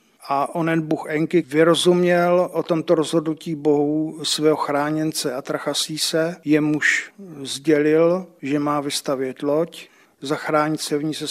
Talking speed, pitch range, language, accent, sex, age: 135 wpm, 145-165 Hz, Czech, native, male, 50-69